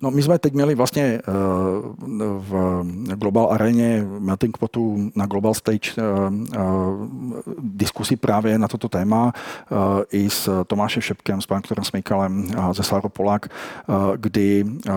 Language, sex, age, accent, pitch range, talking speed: Czech, male, 40-59, native, 95-110 Hz, 115 wpm